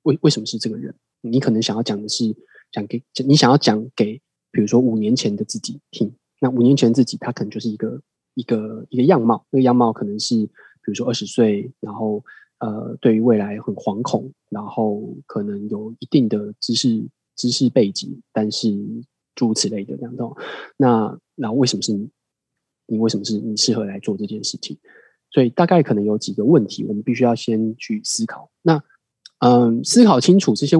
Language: Chinese